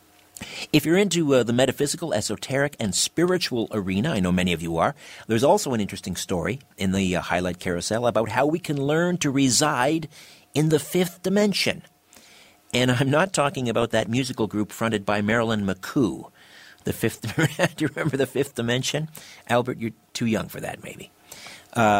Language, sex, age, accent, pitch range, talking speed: English, male, 50-69, American, 105-145 Hz, 170 wpm